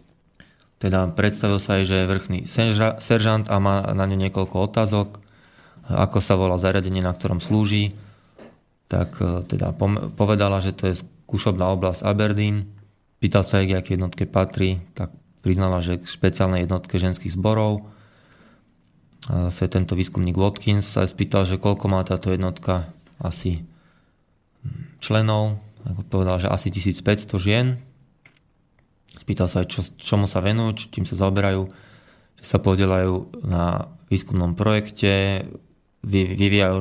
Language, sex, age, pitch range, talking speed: Slovak, male, 20-39, 95-105 Hz, 135 wpm